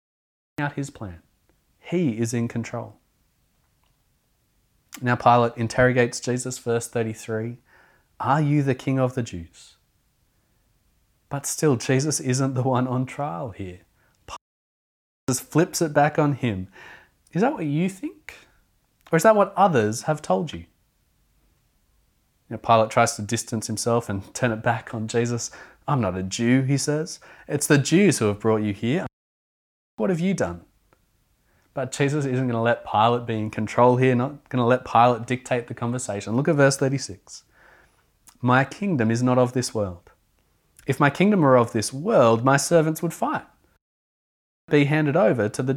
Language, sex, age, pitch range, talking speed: English, male, 30-49, 110-140 Hz, 165 wpm